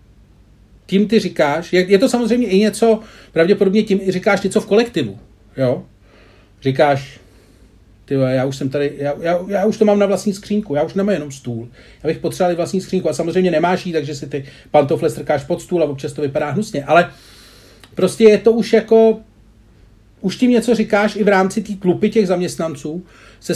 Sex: male